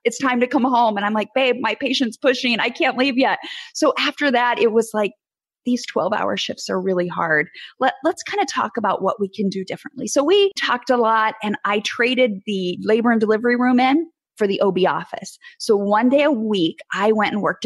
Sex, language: female, English